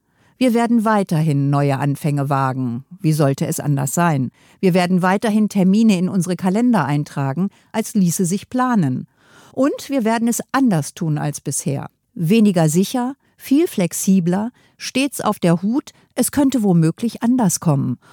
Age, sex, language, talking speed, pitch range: 50-69, female, German, 145 wpm, 165-220 Hz